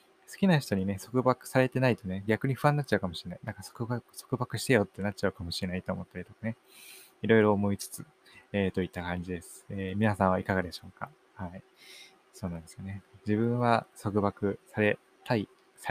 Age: 20-39